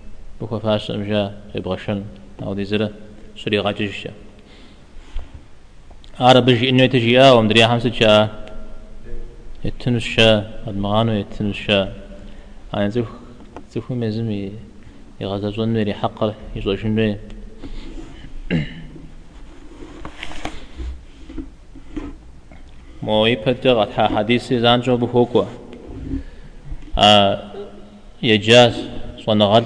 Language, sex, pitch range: Czech, male, 105-115 Hz